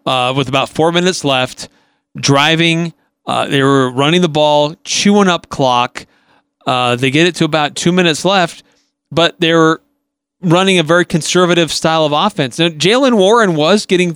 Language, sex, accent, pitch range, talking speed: English, male, American, 140-175 Hz, 170 wpm